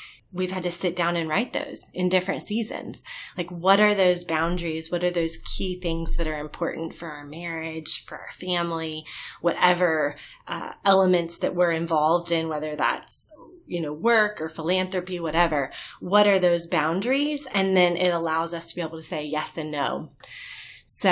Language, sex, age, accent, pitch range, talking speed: English, female, 20-39, American, 160-180 Hz, 180 wpm